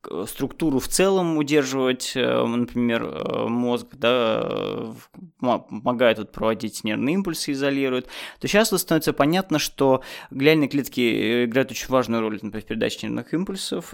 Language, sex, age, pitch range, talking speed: Russian, male, 20-39, 120-155 Hz, 110 wpm